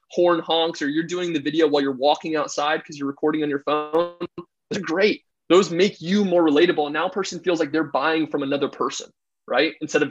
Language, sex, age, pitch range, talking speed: English, male, 20-39, 150-190 Hz, 230 wpm